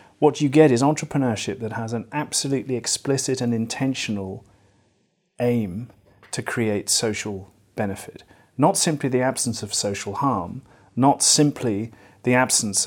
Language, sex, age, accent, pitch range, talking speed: English, male, 40-59, British, 105-135 Hz, 130 wpm